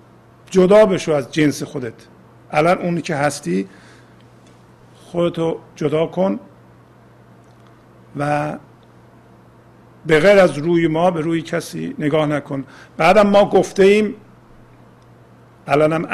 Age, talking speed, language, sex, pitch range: 50-69, 105 wpm, Persian, male, 140-175 Hz